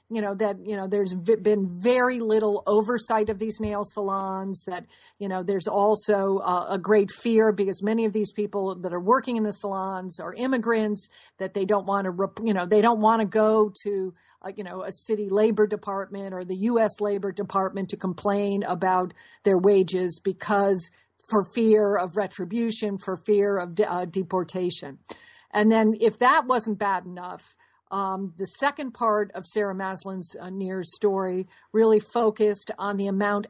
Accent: American